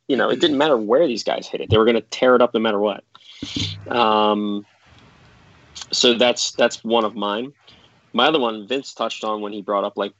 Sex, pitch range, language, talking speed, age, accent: male, 100-120 Hz, English, 225 wpm, 20-39, American